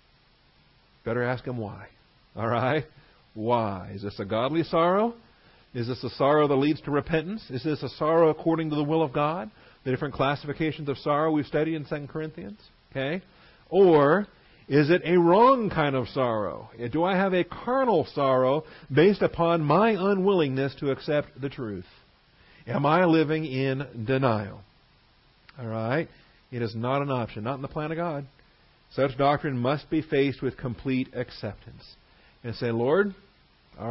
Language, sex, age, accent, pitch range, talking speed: English, male, 50-69, American, 120-170 Hz, 165 wpm